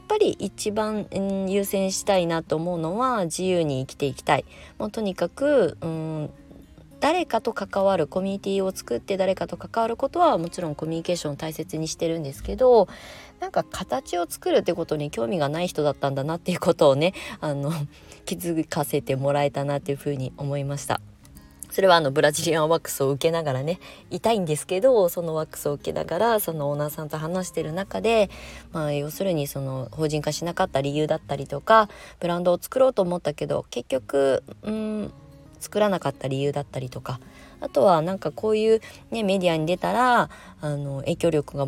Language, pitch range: Japanese, 145-190 Hz